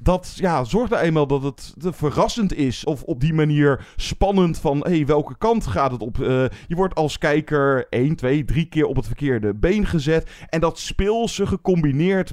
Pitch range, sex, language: 120-160 Hz, male, Dutch